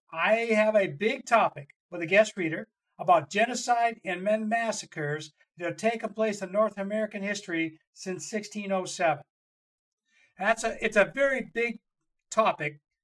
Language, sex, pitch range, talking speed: English, male, 180-220 Hz, 145 wpm